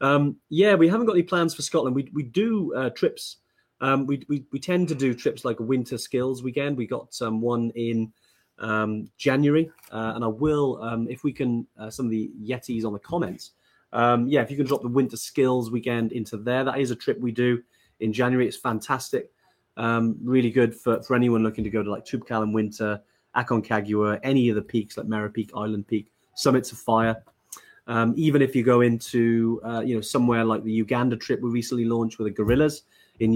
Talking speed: 210 wpm